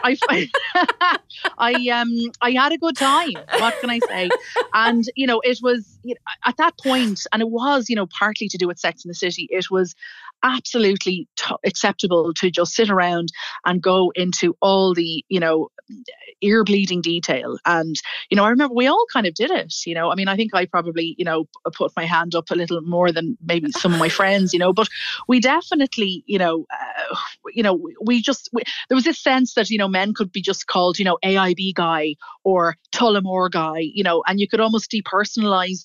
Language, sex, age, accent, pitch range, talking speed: English, female, 30-49, Irish, 170-235 Hz, 210 wpm